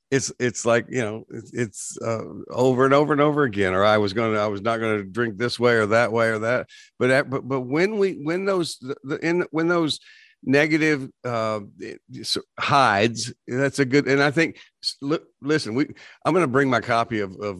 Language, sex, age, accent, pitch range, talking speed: English, male, 50-69, American, 110-140 Hz, 220 wpm